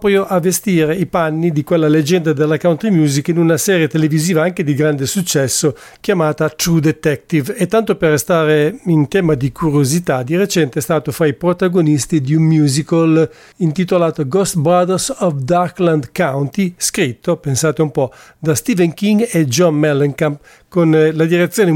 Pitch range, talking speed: 155-180 Hz, 160 wpm